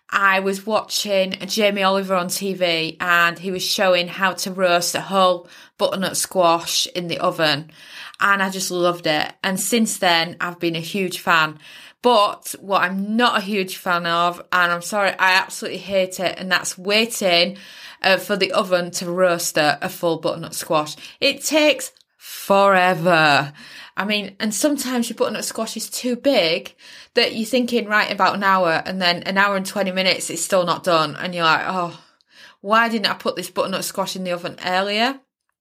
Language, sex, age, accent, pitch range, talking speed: English, female, 20-39, British, 175-225 Hz, 185 wpm